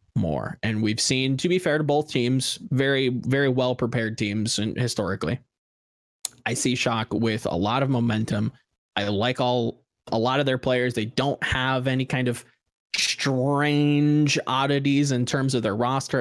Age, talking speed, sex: 20-39, 170 wpm, male